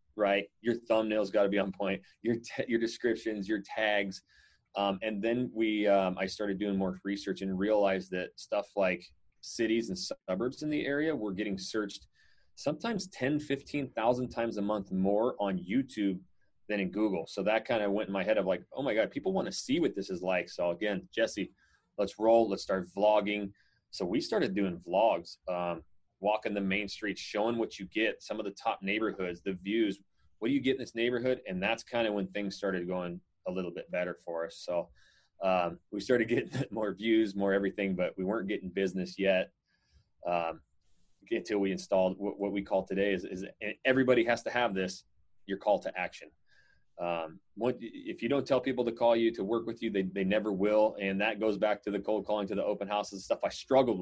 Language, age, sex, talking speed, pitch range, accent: English, 30-49, male, 210 wpm, 95-115 Hz, American